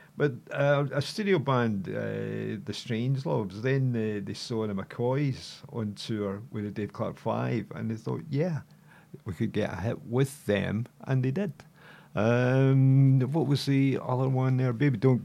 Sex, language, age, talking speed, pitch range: male, English, 50-69, 175 wpm, 105-140 Hz